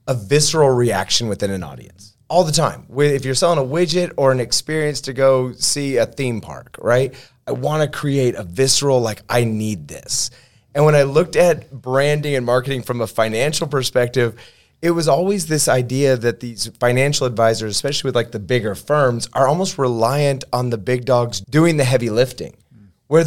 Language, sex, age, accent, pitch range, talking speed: English, male, 30-49, American, 125-160 Hz, 190 wpm